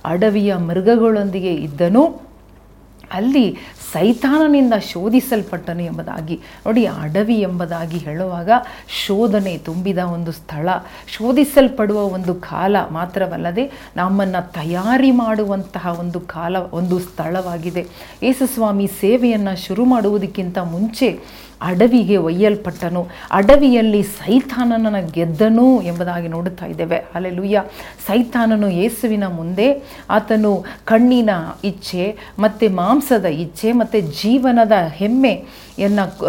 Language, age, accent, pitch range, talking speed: Kannada, 40-59, native, 175-225 Hz, 85 wpm